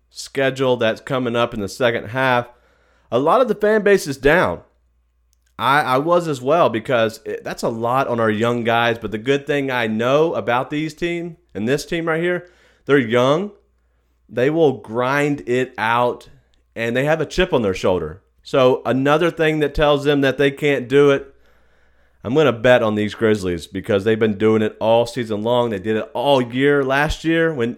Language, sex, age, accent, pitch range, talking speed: English, male, 40-59, American, 110-145 Hz, 200 wpm